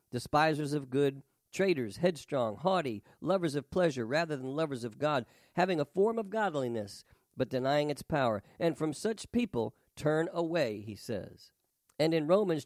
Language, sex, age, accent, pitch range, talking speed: English, male, 50-69, American, 130-180 Hz, 160 wpm